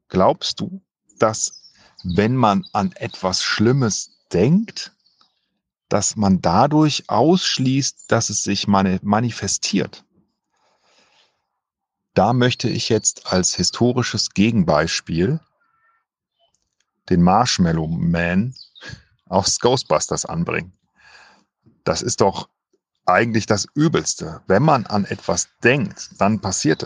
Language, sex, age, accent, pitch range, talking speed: German, male, 40-59, German, 95-130 Hz, 95 wpm